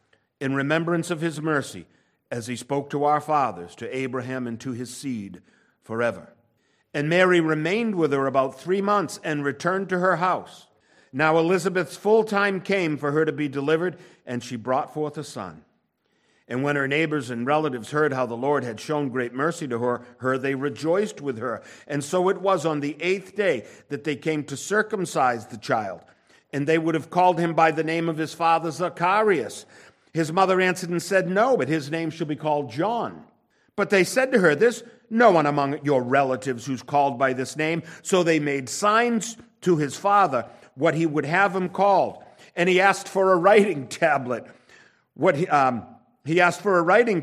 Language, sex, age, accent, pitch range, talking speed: English, male, 50-69, American, 145-185 Hz, 195 wpm